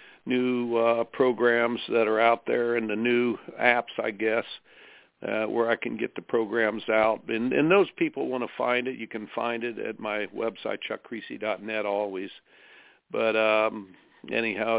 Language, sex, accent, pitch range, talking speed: English, male, American, 110-140 Hz, 165 wpm